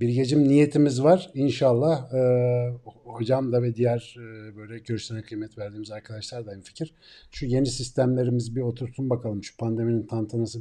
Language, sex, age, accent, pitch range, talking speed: Turkish, male, 50-69, native, 115-140 Hz, 155 wpm